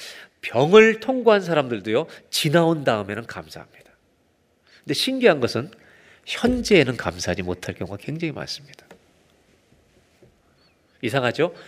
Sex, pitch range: male, 115-170 Hz